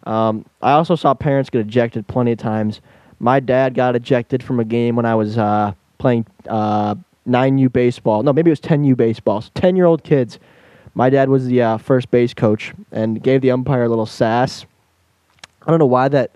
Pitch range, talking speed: 115-150 Hz, 205 wpm